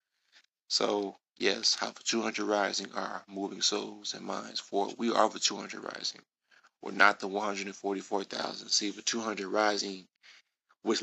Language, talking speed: English, 140 wpm